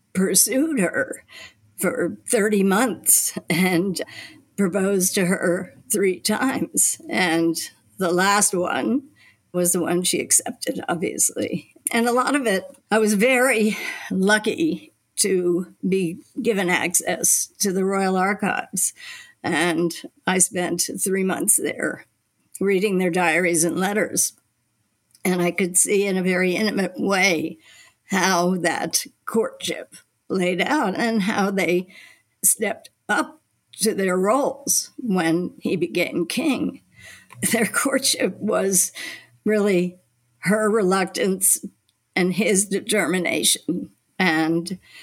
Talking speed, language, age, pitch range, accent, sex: 115 wpm, English, 60-79, 175-215 Hz, American, female